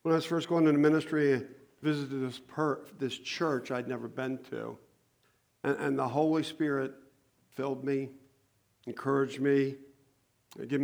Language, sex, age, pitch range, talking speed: English, male, 50-69, 120-140 Hz, 150 wpm